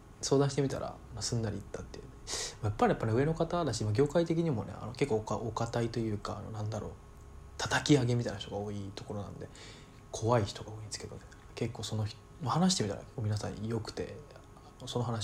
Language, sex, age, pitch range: Japanese, male, 20-39, 105-130 Hz